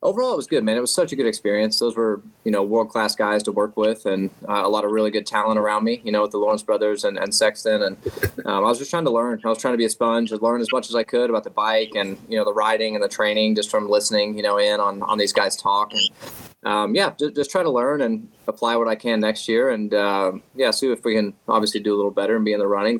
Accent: American